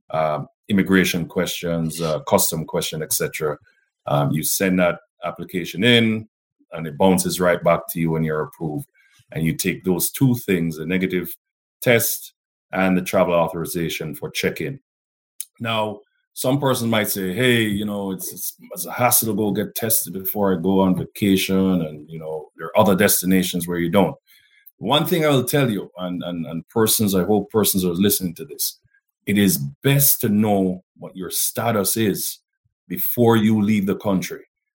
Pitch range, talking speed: 95-120 Hz, 175 wpm